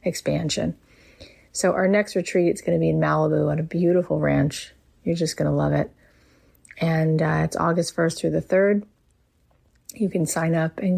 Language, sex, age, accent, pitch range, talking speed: English, female, 30-49, American, 145-165 Hz, 185 wpm